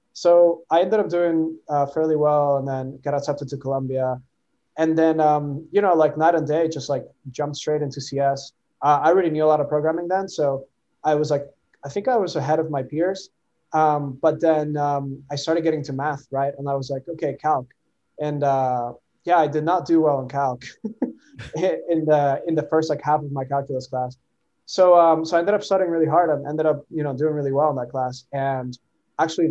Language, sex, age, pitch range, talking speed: English, male, 20-39, 135-160 Hz, 220 wpm